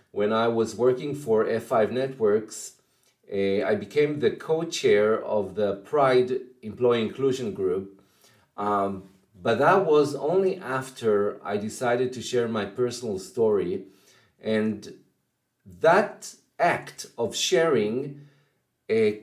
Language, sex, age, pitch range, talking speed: English, male, 40-59, 105-145 Hz, 115 wpm